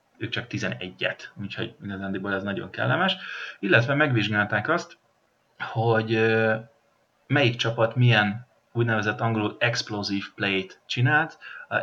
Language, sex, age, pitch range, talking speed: Hungarian, male, 30-49, 100-125 Hz, 110 wpm